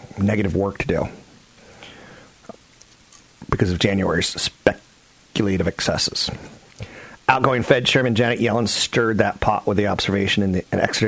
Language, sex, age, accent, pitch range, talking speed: English, male, 40-59, American, 95-110 Hz, 125 wpm